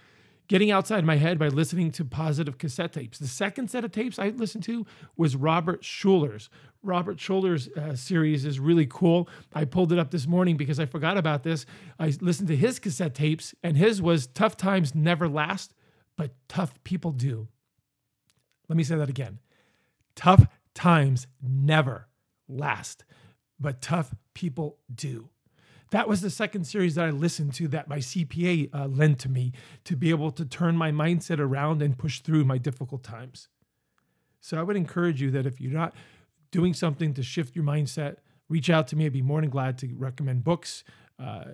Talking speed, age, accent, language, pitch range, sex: 185 wpm, 40-59, American, English, 140-170 Hz, male